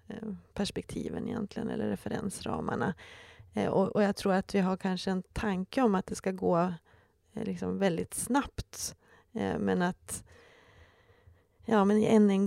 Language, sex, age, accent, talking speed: Swedish, female, 30-49, native, 120 wpm